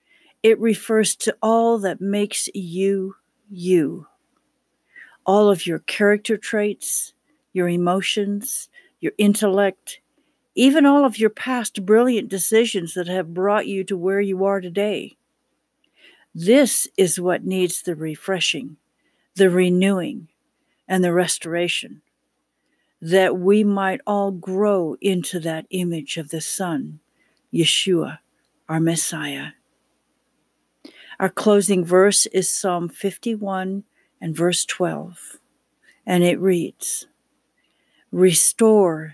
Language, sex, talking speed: English, female, 110 wpm